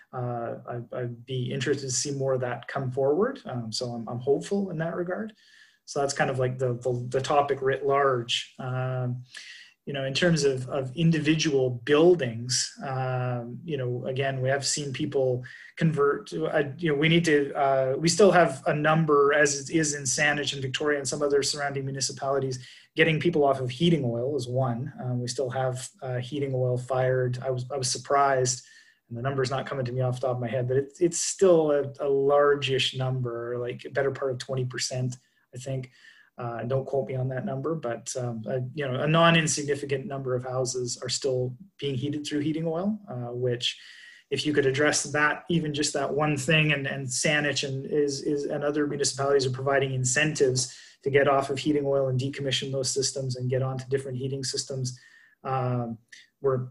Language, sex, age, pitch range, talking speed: English, male, 30-49, 130-145 Hz, 200 wpm